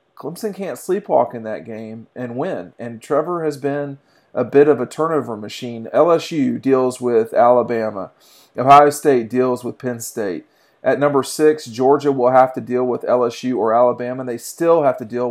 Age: 40-59